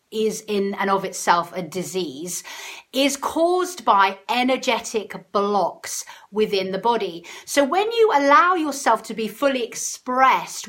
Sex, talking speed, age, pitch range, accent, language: female, 135 wpm, 40-59, 195-265 Hz, British, English